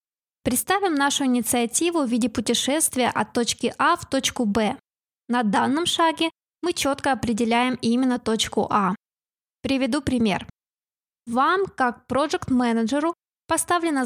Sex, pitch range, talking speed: female, 230-280 Hz, 120 wpm